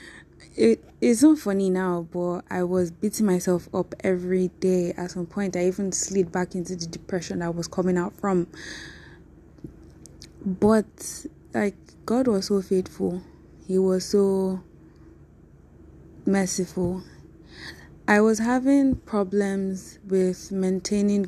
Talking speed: 120 wpm